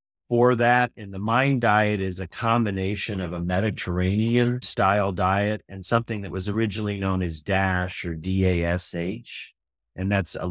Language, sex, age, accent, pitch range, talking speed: English, male, 50-69, American, 85-105 Hz, 155 wpm